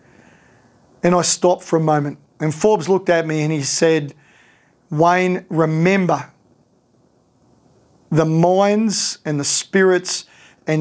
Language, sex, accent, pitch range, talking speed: English, male, Australian, 155-185 Hz, 120 wpm